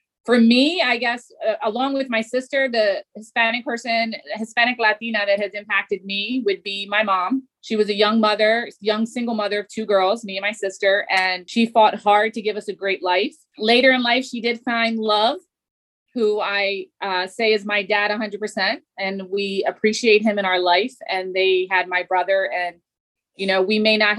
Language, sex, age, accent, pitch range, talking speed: English, female, 30-49, American, 190-225 Hz, 200 wpm